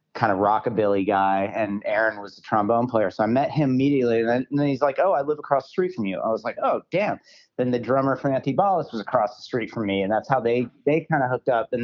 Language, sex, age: English, male, 40-59